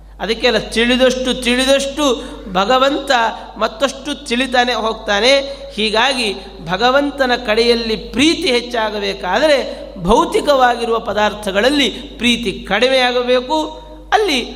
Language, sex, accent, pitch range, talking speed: Kannada, male, native, 195-245 Hz, 70 wpm